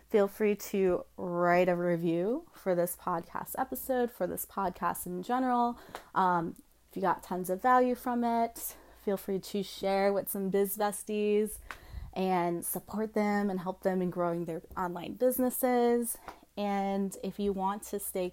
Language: English